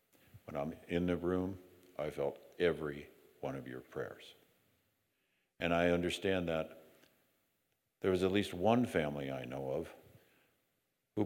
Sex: male